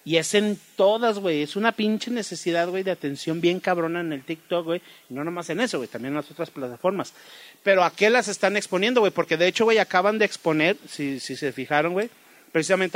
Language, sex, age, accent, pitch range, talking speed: Spanish, male, 40-59, Mexican, 160-215 Hz, 225 wpm